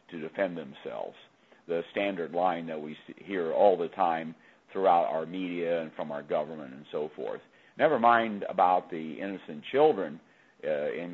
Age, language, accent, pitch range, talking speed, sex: 50-69, English, American, 85-120 Hz, 160 wpm, male